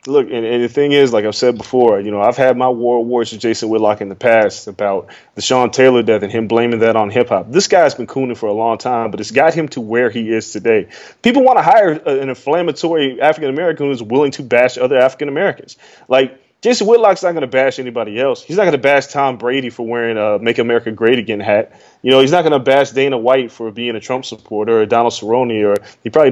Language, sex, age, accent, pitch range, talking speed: English, male, 20-39, American, 115-145 Hz, 250 wpm